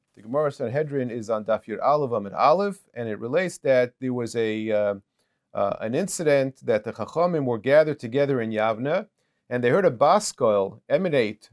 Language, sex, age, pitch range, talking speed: English, male, 40-59, 115-160 Hz, 175 wpm